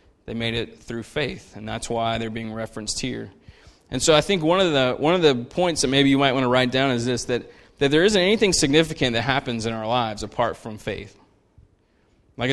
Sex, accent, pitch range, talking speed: male, American, 115-135 Hz, 230 wpm